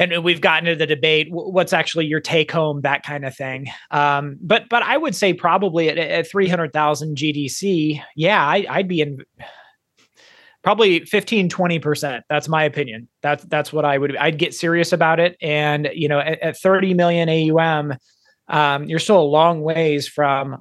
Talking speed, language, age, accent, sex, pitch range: 185 wpm, English, 30-49, American, male, 150-185 Hz